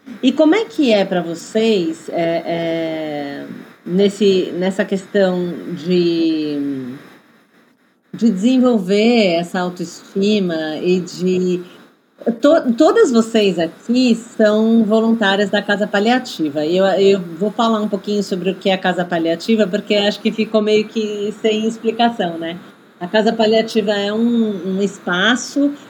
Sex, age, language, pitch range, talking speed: female, 40-59, English, 175-225 Hz, 130 wpm